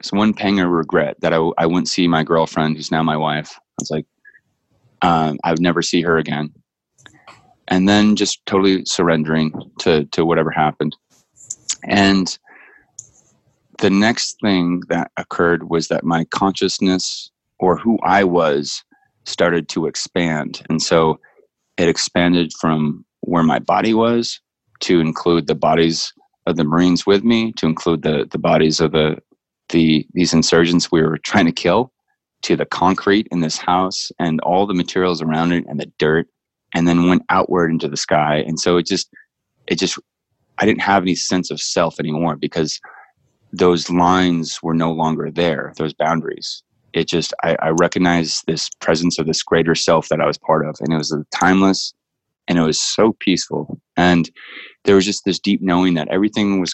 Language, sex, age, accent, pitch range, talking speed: English, male, 30-49, American, 80-90 Hz, 175 wpm